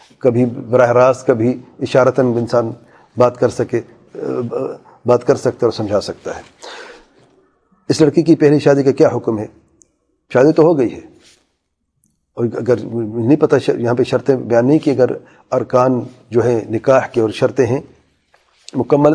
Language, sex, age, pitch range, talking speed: English, male, 40-59, 120-145 Hz, 155 wpm